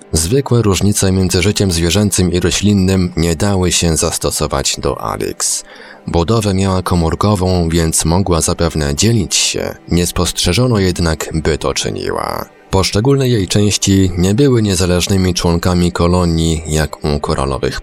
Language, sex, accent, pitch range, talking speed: Polish, male, native, 80-100 Hz, 130 wpm